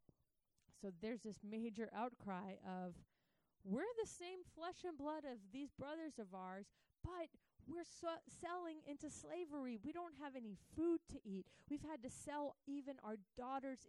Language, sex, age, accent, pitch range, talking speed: English, female, 30-49, American, 205-285 Hz, 155 wpm